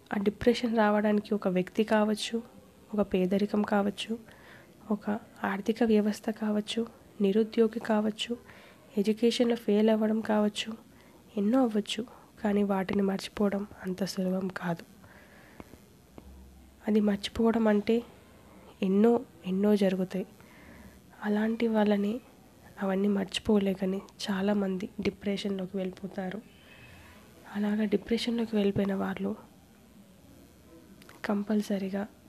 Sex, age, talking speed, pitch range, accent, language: female, 20-39, 85 wpm, 200-220 Hz, native, Telugu